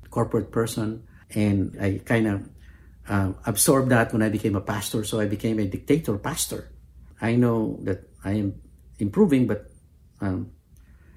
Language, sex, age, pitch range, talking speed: English, male, 50-69, 95-125 Hz, 150 wpm